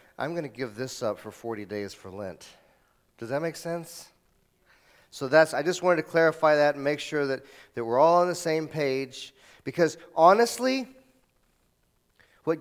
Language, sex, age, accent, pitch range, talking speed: English, male, 40-59, American, 150-195 Hz, 175 wpm